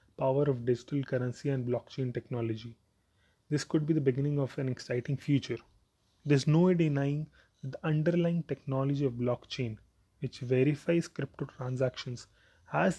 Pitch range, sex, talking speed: 115-150 Hz, male, 150 wpm